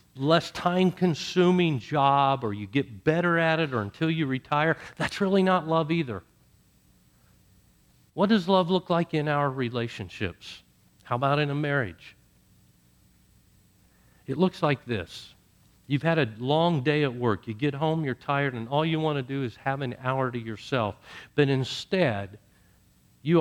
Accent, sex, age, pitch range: American, male, 50-69, 115-165 Hz